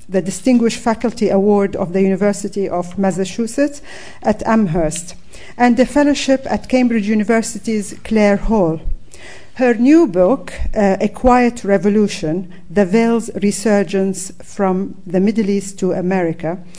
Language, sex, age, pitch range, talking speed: English, female, 50-69, 195-230 Hz, 125 wpm